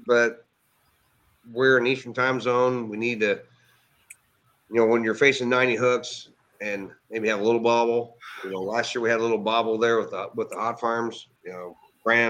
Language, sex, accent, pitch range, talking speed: English, male, American, 110-125 Hz, 200 wpm